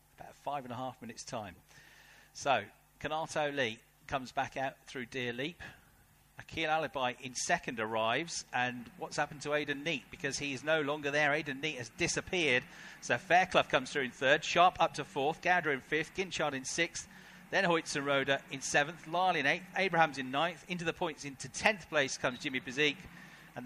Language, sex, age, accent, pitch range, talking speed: English, male, 40-59, British, 115-150 Hz, 185 wpm